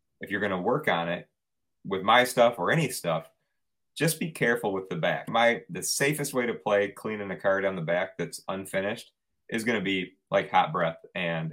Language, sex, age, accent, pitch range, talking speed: English, male, 30-49, American, 85-100 Hz, 215 wpm